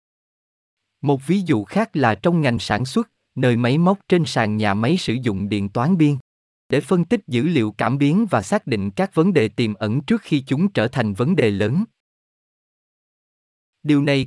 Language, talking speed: Vietnamese, 195 wpm